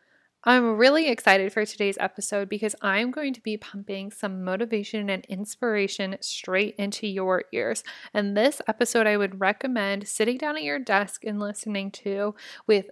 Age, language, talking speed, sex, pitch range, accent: 20-39, English, 165 wpm, female, 195-240 Hz, American